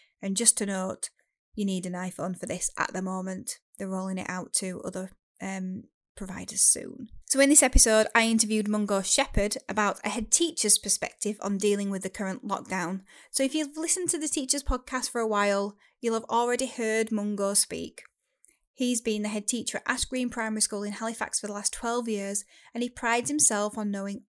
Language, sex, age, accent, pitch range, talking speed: English, female, 10-29, British, 195-240 Hz, 200 wpm